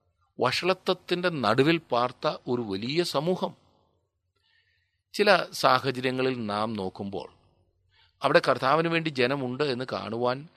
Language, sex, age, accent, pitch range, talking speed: Malayalam, male, 40-59, native, 95-145 Hz, 90 wpm